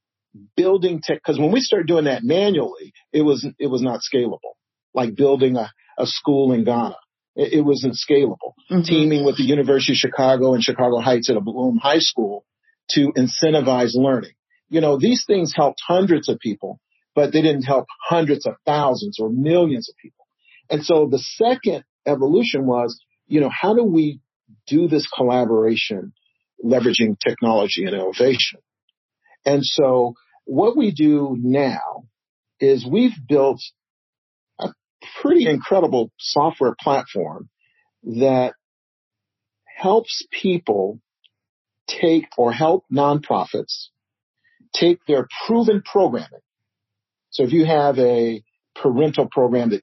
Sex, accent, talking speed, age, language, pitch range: male, American, 135 wpm, 50-69, English, 125-160 Hz